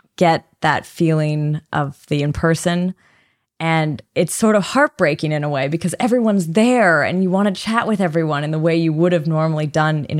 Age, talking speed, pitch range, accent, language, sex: 20-39, 200 wpm, 145-175 Hz, American, English, female